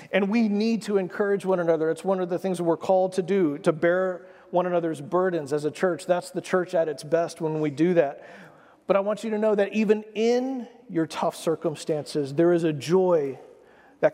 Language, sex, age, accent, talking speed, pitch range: English, male, 40-59, American, 215 wpm, 155-190 Hz